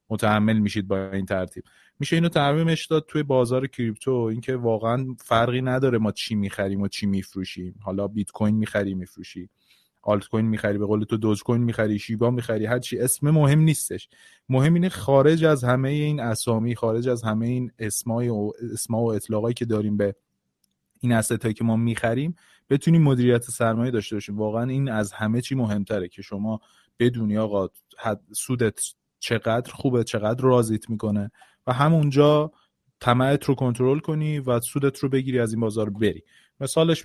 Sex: male